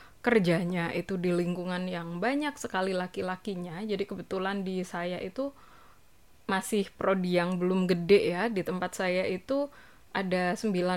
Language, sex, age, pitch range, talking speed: Indonesian, female, 20-39, 185-240 Hz, 130 wpm